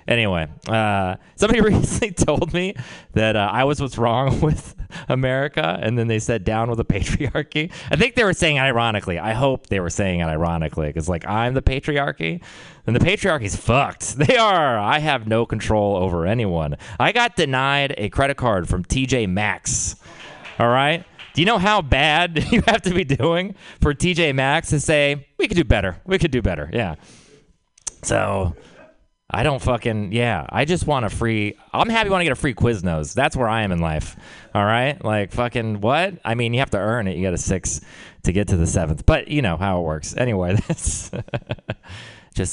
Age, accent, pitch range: 30-49, American, 100-140 Hz